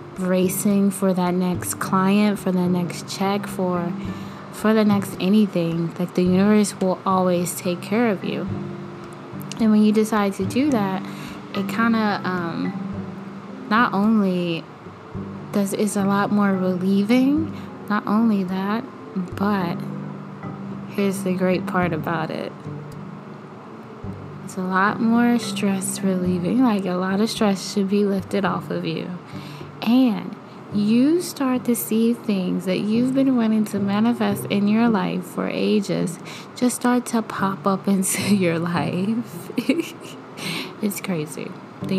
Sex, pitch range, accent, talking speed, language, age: female, 180-210 Hz, American, 140 wpm, English, 20-39